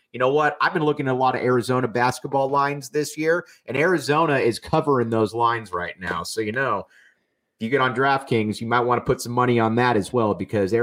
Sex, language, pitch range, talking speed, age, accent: male, English, 110-145 Hz, 240 wpm, 30-49, American